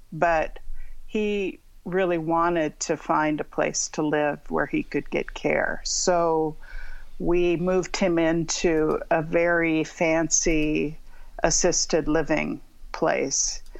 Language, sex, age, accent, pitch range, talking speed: English, female, 50-69, American, 160-190 Hz, 115 wpm